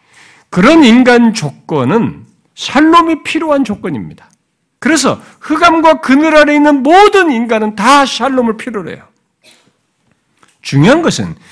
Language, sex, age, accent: Korean, male, 50-69, native